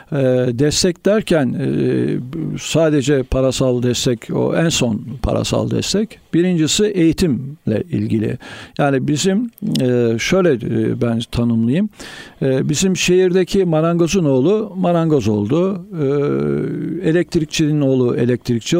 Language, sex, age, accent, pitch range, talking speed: Turkish, male, 60-79, native, 130-175 Hz, 100 wpm